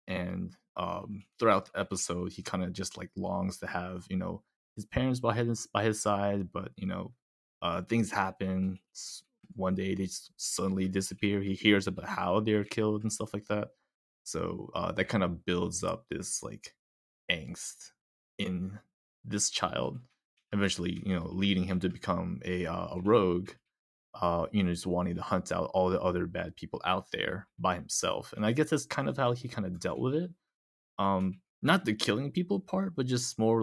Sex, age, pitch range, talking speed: male, 20-39, 90-115 Hz, 190 wpm